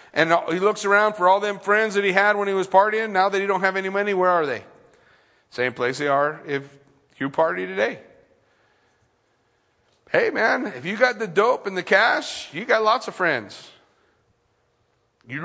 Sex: male